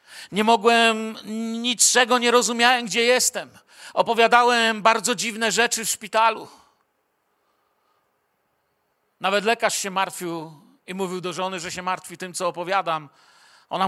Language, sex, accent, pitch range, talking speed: Polish, male, native, 180-230 Hz, 120 wpm